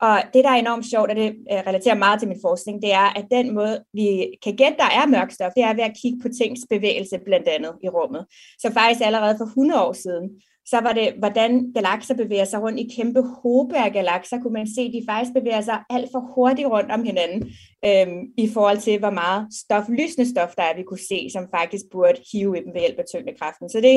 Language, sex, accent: Danish, female, native